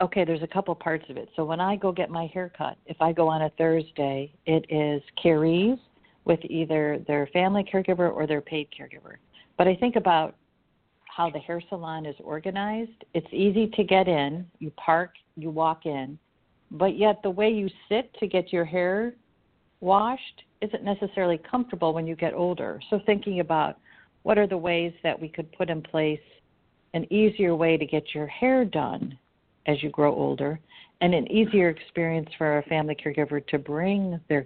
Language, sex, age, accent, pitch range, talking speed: English, female, 50-69, American, 150-195 Hz, 185 wpm